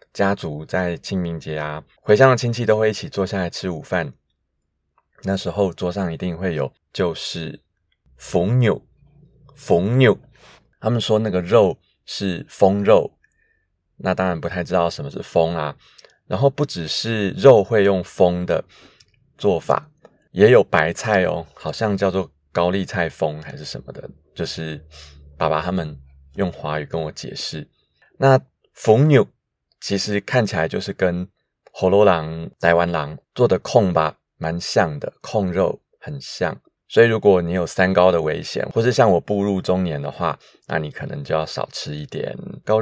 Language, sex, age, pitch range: Chinese, male, 30-49, 80-105 Hz